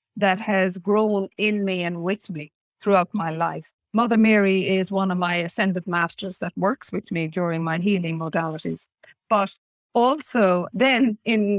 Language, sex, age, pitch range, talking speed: English, female, 50-69, 180-225 Hz, 160 wpm